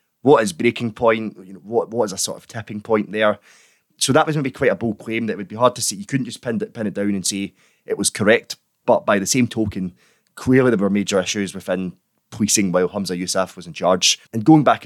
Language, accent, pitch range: English, British, 95-110 Hz